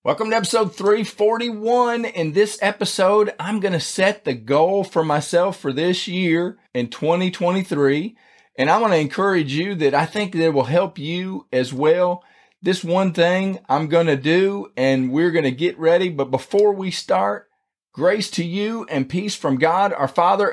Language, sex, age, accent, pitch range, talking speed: English, male, 40-59, American, 140-185 Hz, 180 wpm